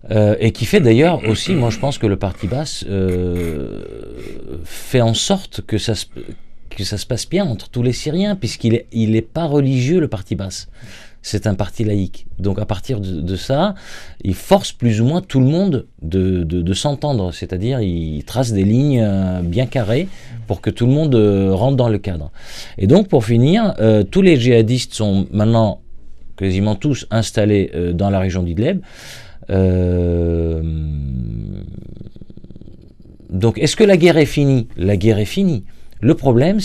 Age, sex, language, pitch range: 40-59, male, French, 95-130 Hz